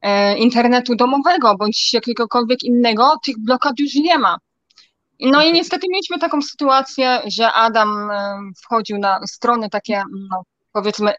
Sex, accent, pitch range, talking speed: female, native, 210-265 Hz, 125 wpm